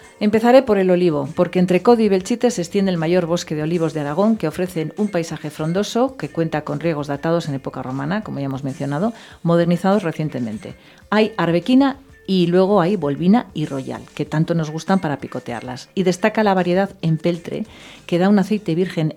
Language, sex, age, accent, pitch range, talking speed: English, female, 40-59, Spanish, 155-200 Hz, 190 wpm